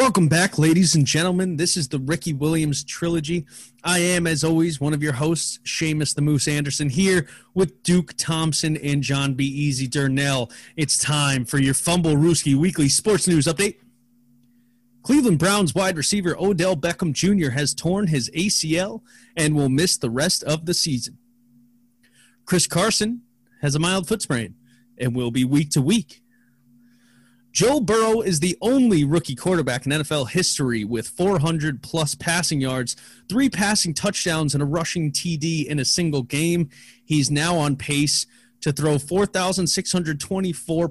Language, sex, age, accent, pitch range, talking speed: English, male, 30-49, American, 135-175 Hz, 155 wpm